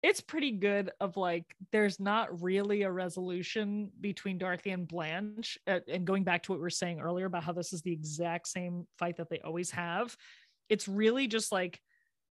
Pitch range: 175-210 Hz